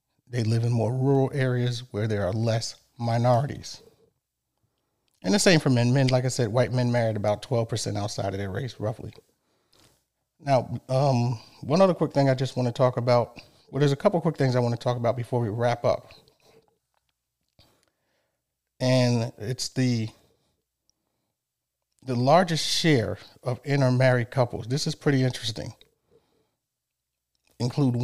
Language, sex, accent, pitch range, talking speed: English, male, American, 115-135 Hz, 150 wpm